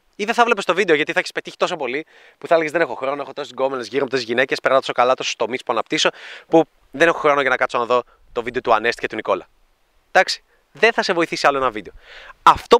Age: 20-39